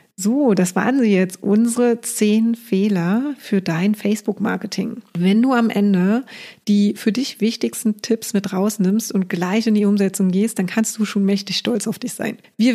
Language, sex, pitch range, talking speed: German, female, 190-220 Hz, 180 wpm